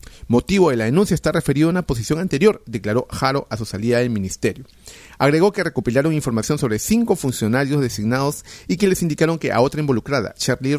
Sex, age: male, 40-59